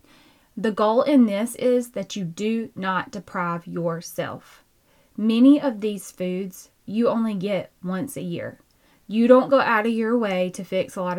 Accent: American